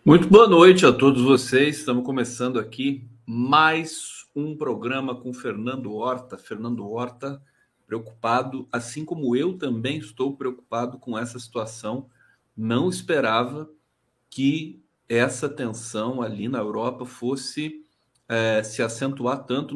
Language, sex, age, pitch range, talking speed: Portuguese, male, 40-59, 125-155 Hz, 120 wpm